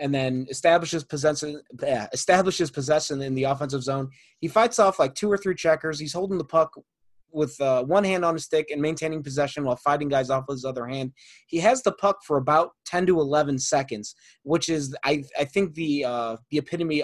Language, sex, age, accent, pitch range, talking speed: English, male, 20-39, American, 135-165 Hz, 210 wpm